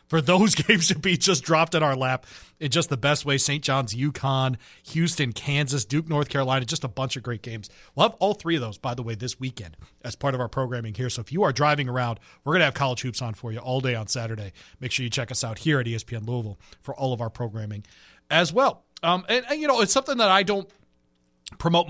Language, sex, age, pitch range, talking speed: English, male, 40-59, 120-155 Hz, 255 wpm